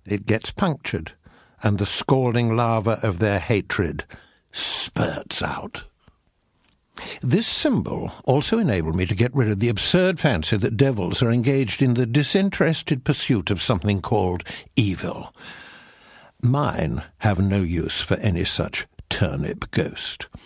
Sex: male